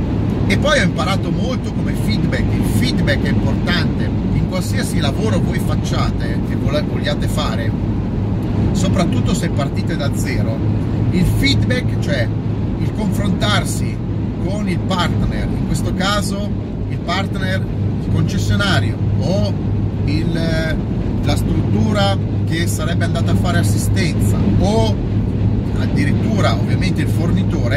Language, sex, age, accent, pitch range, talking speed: Italian, male, 40-59, native, 100-110 Hz, 115 wpm